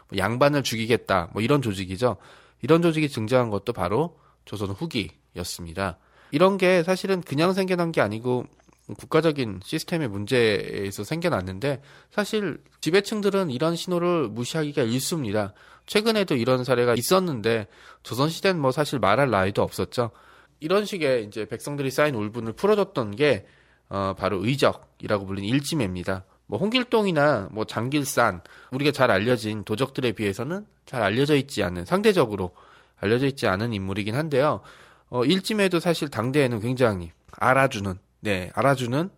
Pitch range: 105-160 Hz